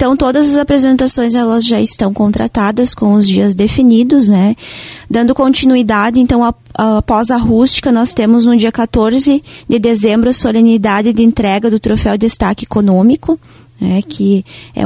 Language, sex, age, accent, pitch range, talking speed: Portuguese, female, 20-39, Brazilian, 205-245 Hz, 140 wpm